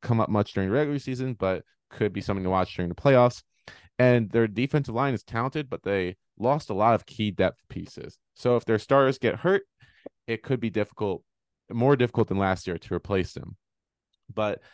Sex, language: male, English